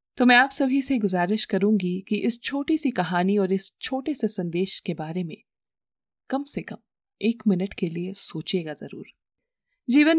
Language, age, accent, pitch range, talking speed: Hindi, 30-49, native, 180-225 Hz, 175 wpm